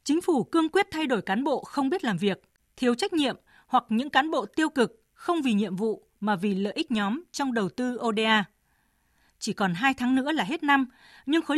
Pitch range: 215-275 Hz